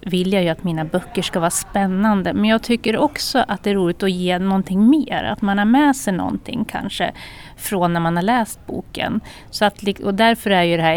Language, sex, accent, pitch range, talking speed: Swedish, female, native, 180-220 Hz, 230 wpm